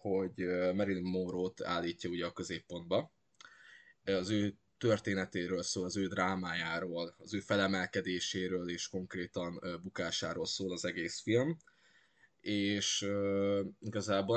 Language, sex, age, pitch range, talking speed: Hungarian, male, 20-39, 90-105 Hz, 110 wpm